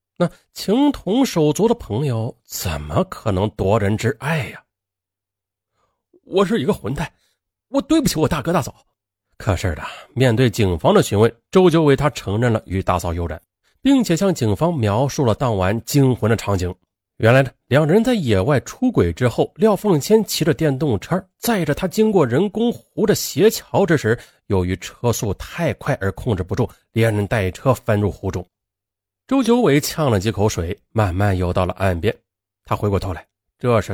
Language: Chinese